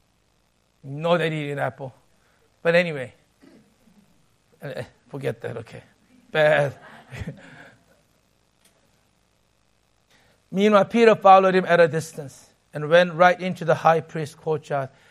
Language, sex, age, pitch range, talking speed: English, male, 60-79, 160-230 Hz, 105 wpm